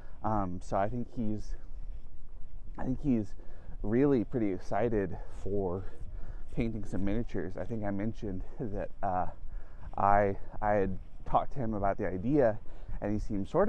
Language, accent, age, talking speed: English, American, 20-39, 150 wpm